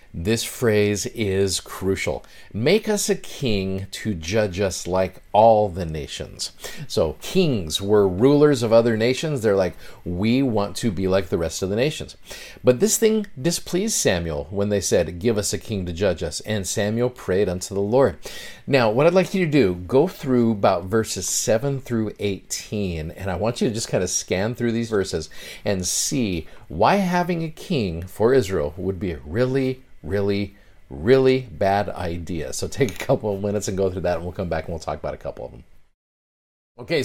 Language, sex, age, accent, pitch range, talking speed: English, male, 50-69, American, 95-130 Hz, 195 wpm